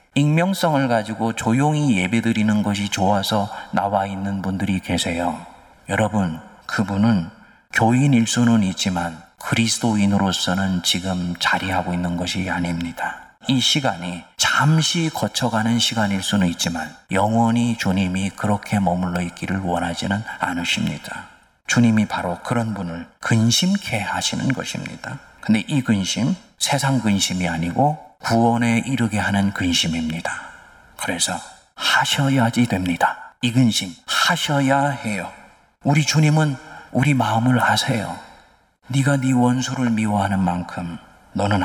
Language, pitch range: Korean, 95-130 Hz